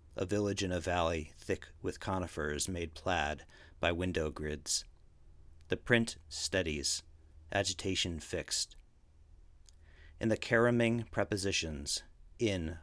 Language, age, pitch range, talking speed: English, 40-59, 75-95 Hz, 110 wpm